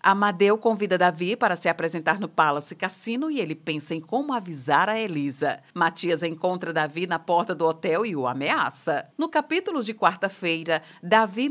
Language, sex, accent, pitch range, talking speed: Portuguese, female, Brazilian, 160-230 Hz, 165 wpm